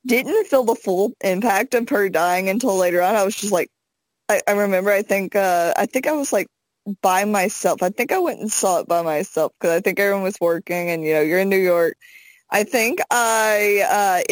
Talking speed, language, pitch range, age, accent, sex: 225 wpm, English, 190-280 Hz, 20-39, American, female